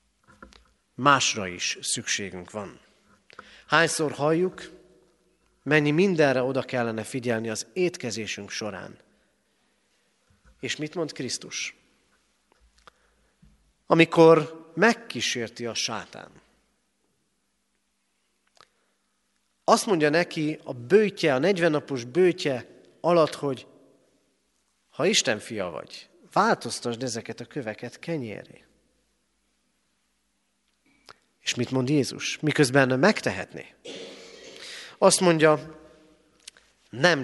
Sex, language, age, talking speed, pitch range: male, Hungarian, 40-59, 80 wpm, 120-170 Hz